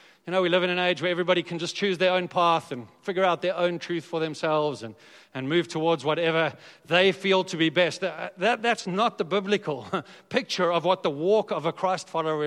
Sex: male